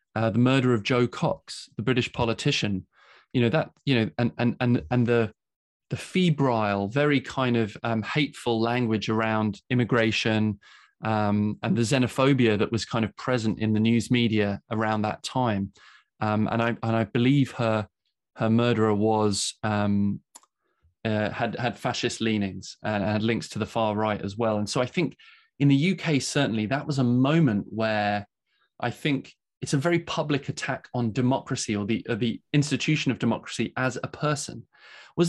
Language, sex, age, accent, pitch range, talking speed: French, male, 20-39, British, 110-135 Hz, 175 wpm